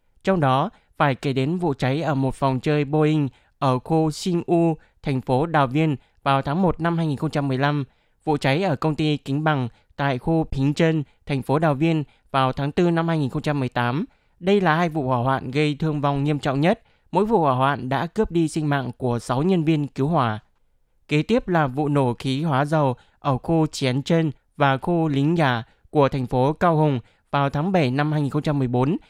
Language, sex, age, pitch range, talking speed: Vietnamese, male, 20-39, 135-160 Hz, 200 wpm